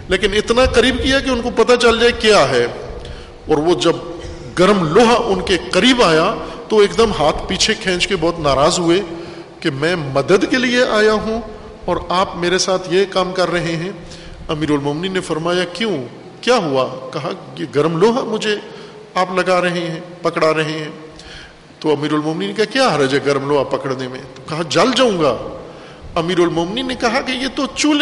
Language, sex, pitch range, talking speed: Urdu, male, 170-235 Hz, 195 wpm